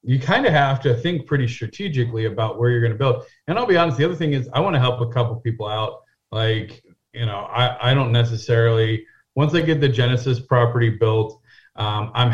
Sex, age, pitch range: male, 30-49, 115-135 Hz